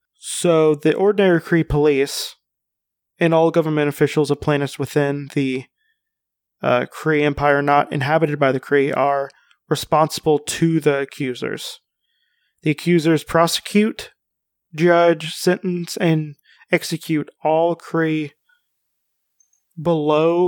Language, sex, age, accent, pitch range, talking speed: English, male, 30-49, American, 140-170 Hz, 105 wpm